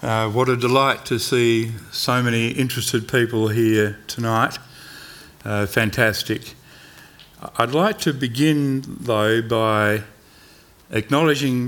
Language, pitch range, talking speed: English, 105-130 Hz, 110 wpm